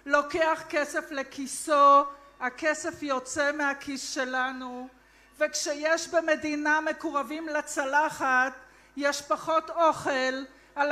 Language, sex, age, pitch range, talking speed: Hebrew, female, 50-69, 280-340 Hz, 80 wpm